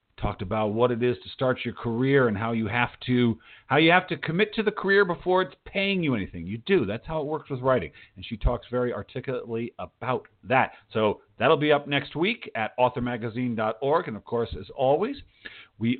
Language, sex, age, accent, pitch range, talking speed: English, male, 50-69, American, 115-160 Hz, 210 wpm